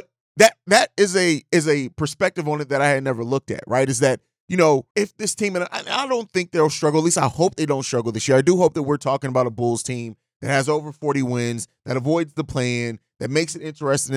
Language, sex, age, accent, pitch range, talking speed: English, male, 30-49, American, 135-175 Hz, 265 wpm